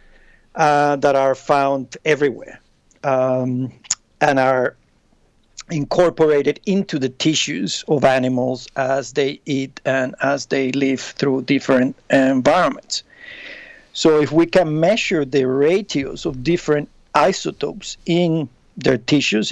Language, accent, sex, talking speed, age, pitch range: English, Mexican, male, 115 wpm, 50-69, 130-150 Hz